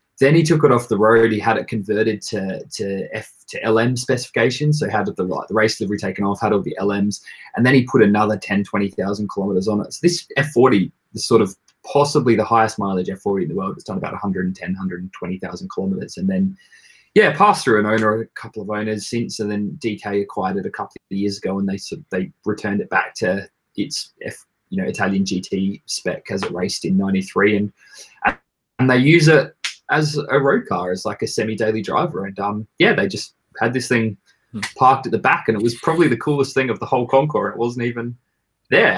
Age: 20-39